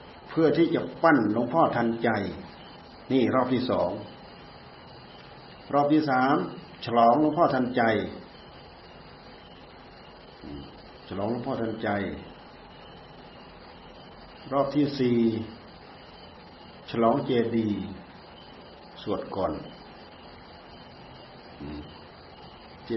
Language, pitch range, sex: Thai, 105-125 Hz, male